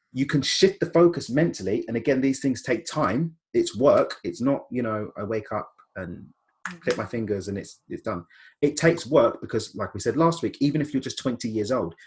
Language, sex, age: English, male, 30-49